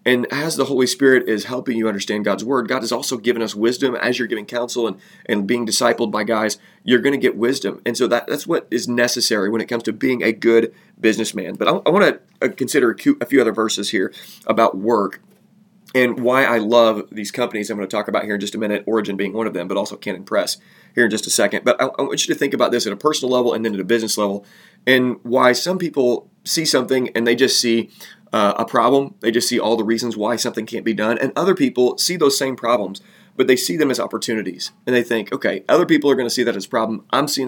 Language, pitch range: English, 110-135 Hz